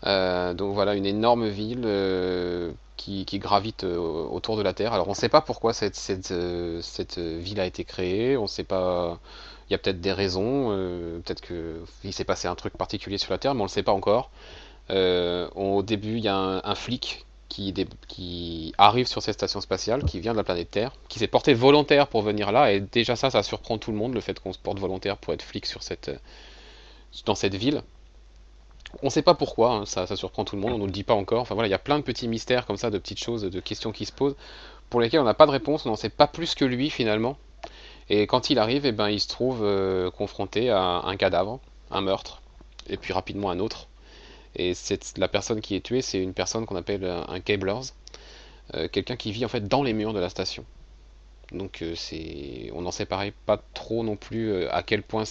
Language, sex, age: French, male, 30-49